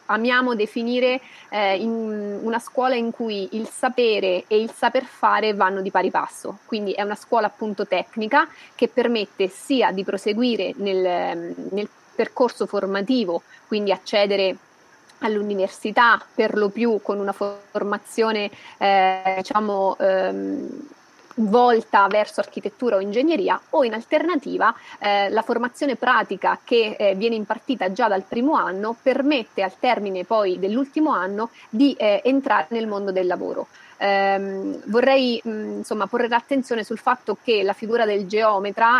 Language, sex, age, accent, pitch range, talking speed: Italian, female, 30-49, native, 200-235 Hz, 135 wpm